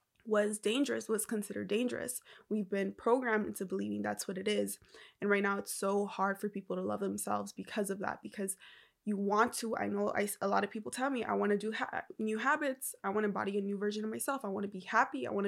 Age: 20-39